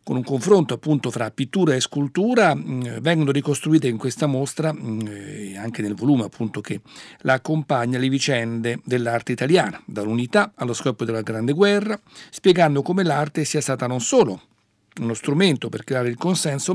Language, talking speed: Italian, 155 wpm